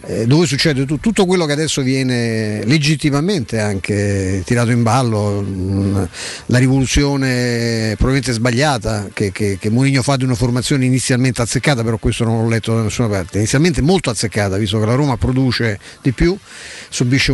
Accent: native